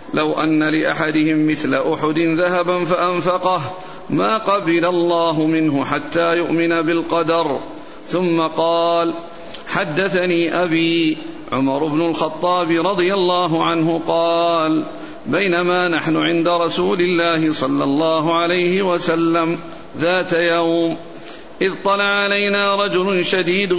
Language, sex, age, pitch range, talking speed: Arabic, male, 50-69, 165-180 Hz, 105 wpm